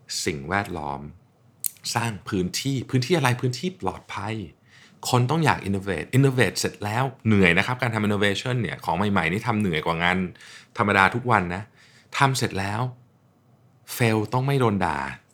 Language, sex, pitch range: Thai, male, 90-125 Hz